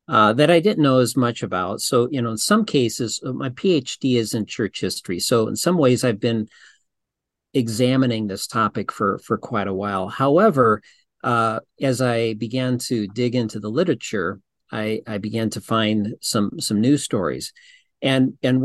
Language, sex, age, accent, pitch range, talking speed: English, male, 50-69, American, 115-140 Hz, 175 wpm